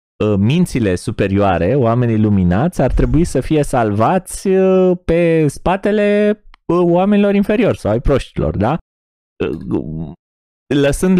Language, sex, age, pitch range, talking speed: Romanian, male, 20-39, 100-165 Hz, 95 wpm